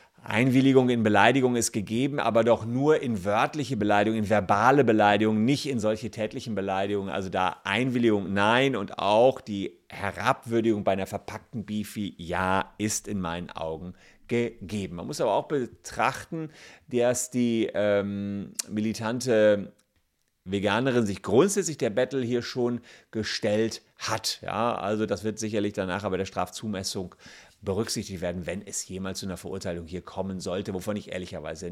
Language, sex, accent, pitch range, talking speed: German, male, German, 95-120 Hz, 150 wpm